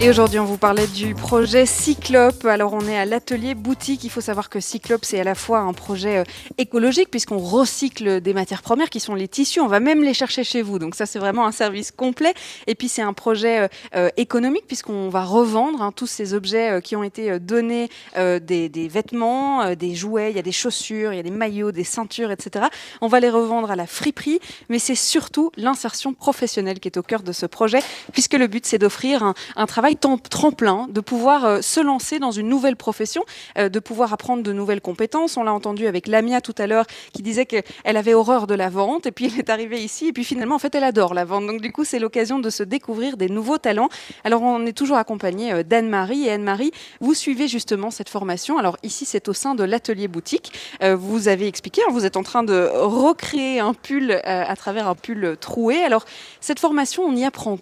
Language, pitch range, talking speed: French, 205-255 Hz, 225 wpm